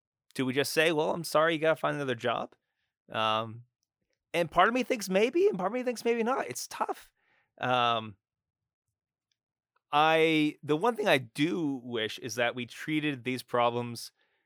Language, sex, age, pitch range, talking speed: English, male, 20-39, 120-160 Hz, 175 wpm